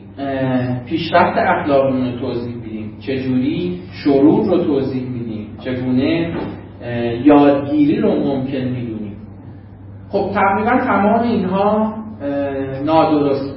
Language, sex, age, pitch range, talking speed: Persian, male, 40-59, 125-180 Hz, 90 wpm